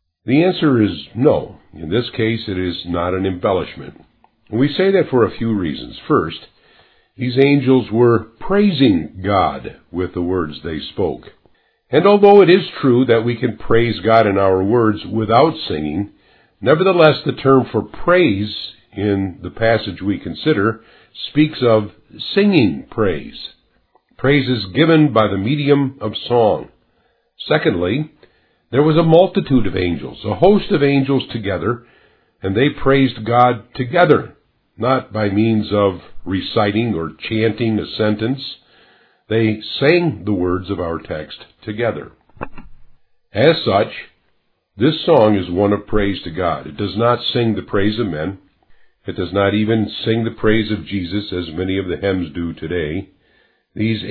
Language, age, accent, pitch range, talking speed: English, 50-69, American, 100-130 Hz, 150 wpm